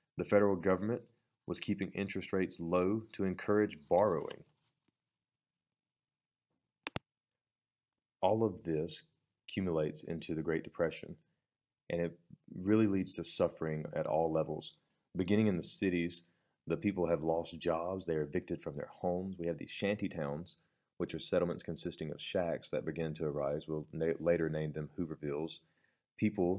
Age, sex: 40-59, male